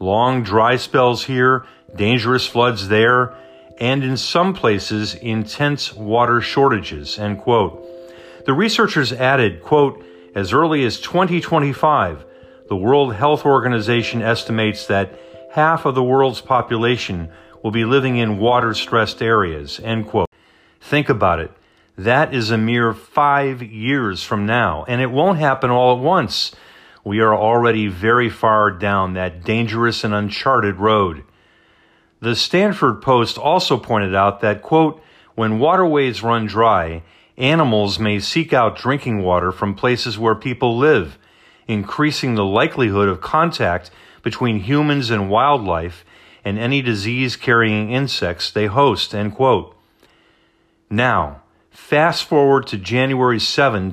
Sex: male